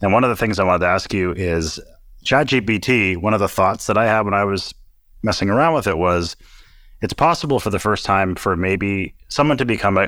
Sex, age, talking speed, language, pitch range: male, 30-49, 230 wpm, English, 90-110 Hz